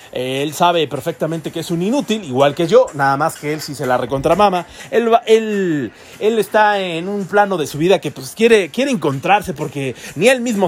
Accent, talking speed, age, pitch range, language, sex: Mexican, 215 wpm, 30-49, 155-210 Hz, Spanish, male